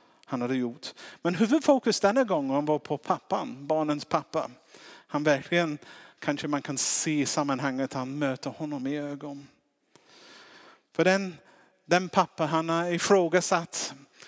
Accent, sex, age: Norwegian, male, 50-69